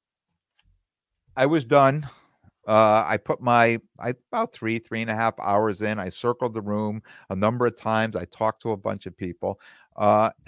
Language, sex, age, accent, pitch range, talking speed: English, male, 50-69, American, 95-125 Hz, 185 wpm